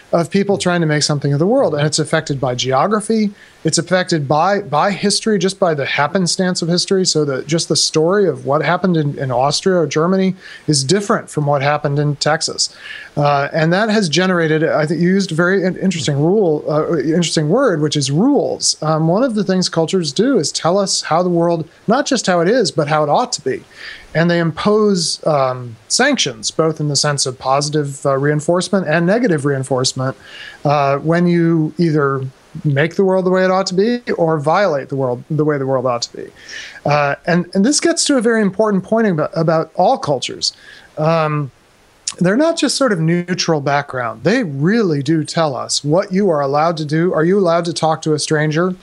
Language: English